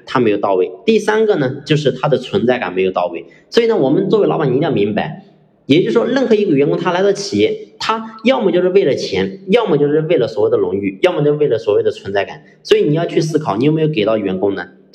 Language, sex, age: Chinese, male, 30-49